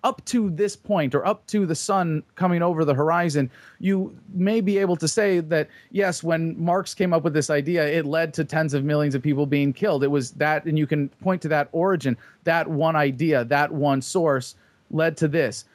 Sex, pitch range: male, 145-175 Hz